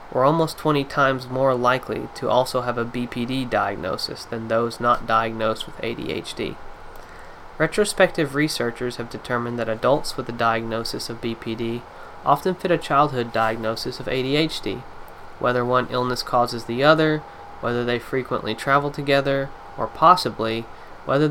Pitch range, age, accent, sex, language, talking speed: 115-140 Hz, 20-39, American, male, English, 140 wpm